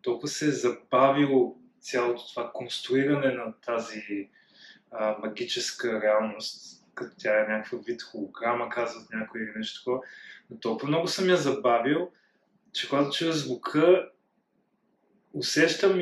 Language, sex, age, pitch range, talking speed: Bulgarian, male, 20-39, 120-155 Hz, 125 wpm